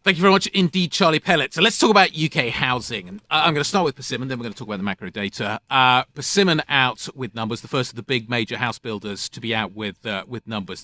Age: 40-59